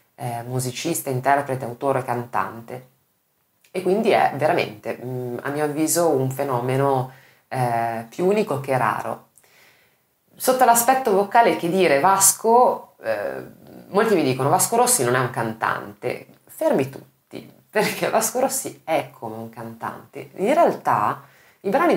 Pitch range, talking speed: 125-160 Hz, 130 wpm